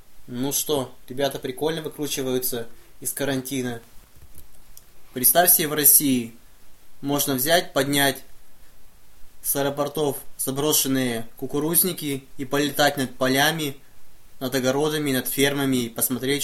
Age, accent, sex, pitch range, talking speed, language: 20-39, native, male, 120-145 Hz, 100 wpm, Russian